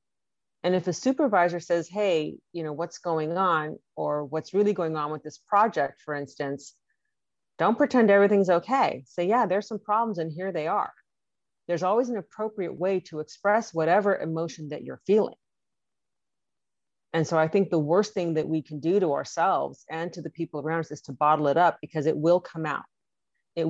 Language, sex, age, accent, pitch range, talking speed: English, female, 40-59, American, 150-175 Hz, 190 wpm